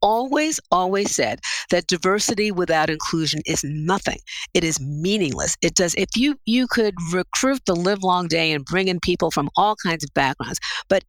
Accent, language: American, English